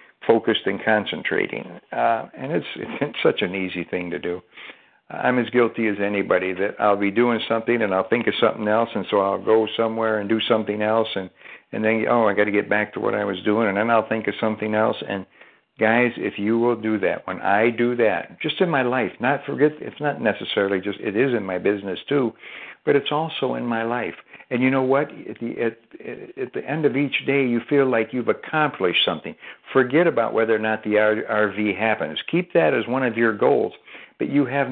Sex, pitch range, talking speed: male, 105-135 Hz, 225 wpm